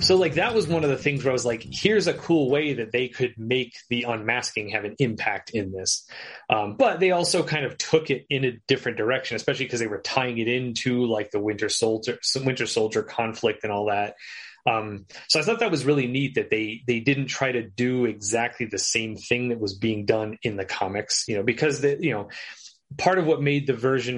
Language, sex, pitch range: English, male, 110-135 Hz